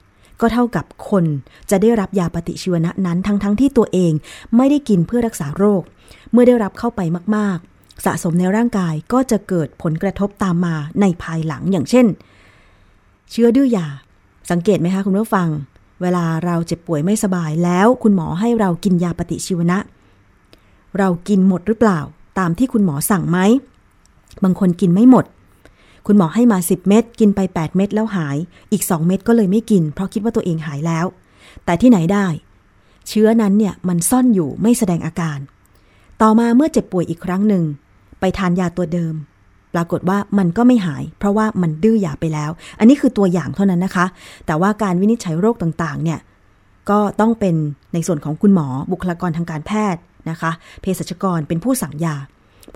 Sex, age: female, 20-39